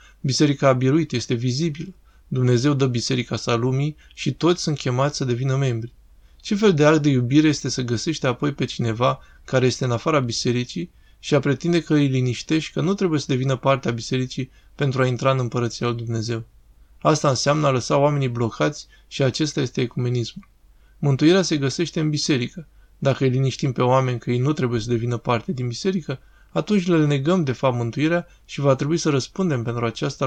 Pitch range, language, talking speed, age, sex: 120-155 Hz, Romanian, 190 wpm, 20-39, male